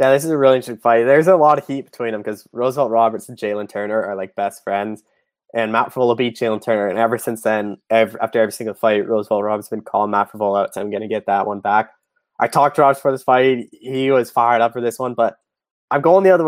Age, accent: 20-39, American